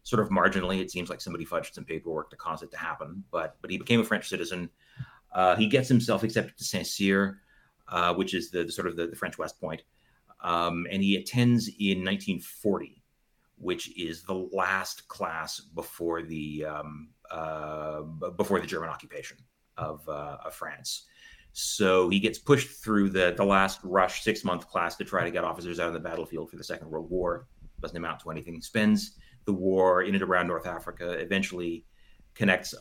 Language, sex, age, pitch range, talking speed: English, male, 30-49, 85-95 Hz, 190 wpm